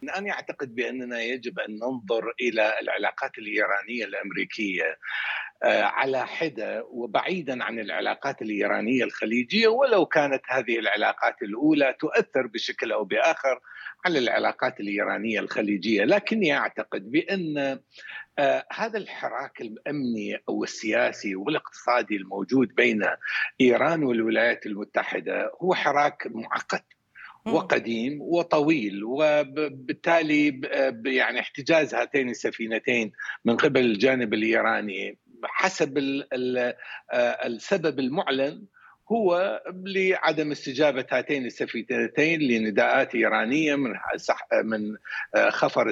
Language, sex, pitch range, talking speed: Arabic, male, 115-160 Hz, 90 wpm